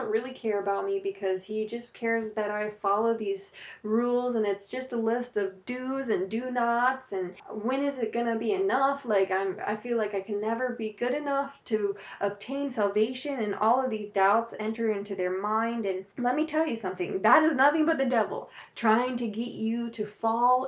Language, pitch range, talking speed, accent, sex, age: English, 205-255 Hz, 210 wpm, American, female, 20-39